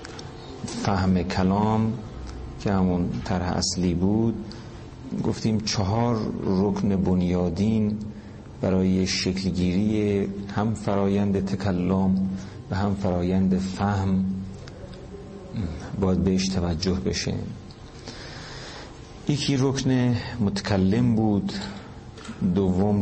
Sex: male